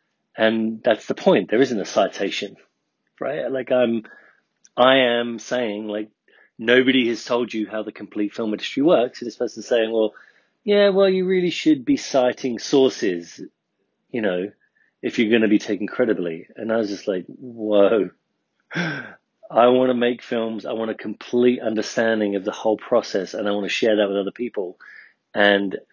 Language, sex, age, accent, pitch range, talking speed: English, male, 40-59, British, 105-120 Hz, 180 wpm